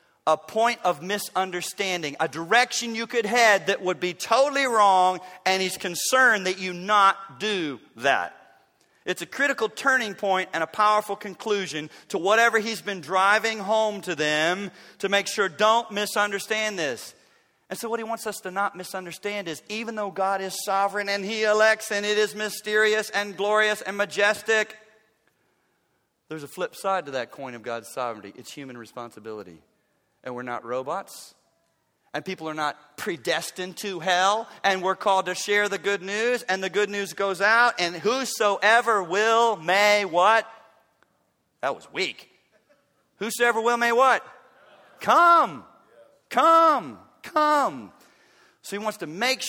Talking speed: 155 wpm